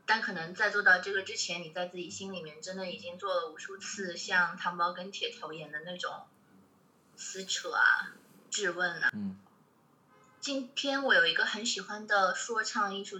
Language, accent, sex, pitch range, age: Chinese, native, female, 190-240 Hz, 20-39